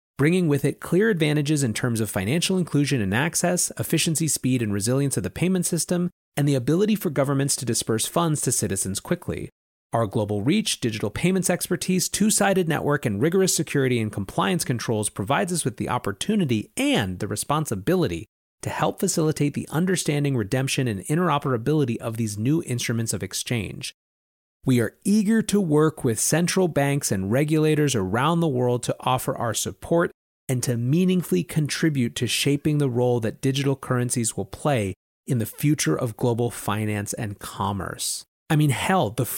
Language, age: English, 30-49